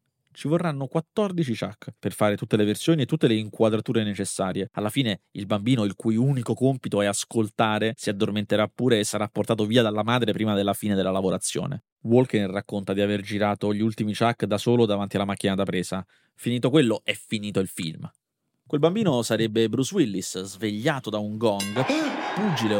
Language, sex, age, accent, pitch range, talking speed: Italian, male, 30-49, native, 100-135 Hz, 180 wpm